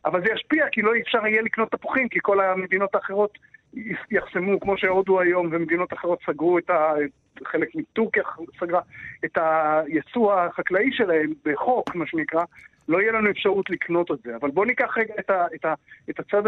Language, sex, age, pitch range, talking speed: Hebrew, male, 50-69, 160-210 Hz, 170 wpm